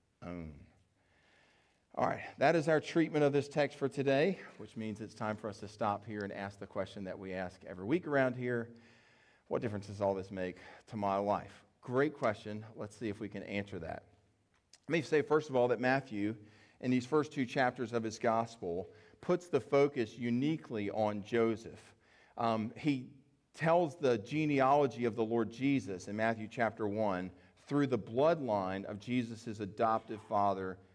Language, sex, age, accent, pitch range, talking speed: English, male, 40-59, American, 105-130 Hz, 175 wpm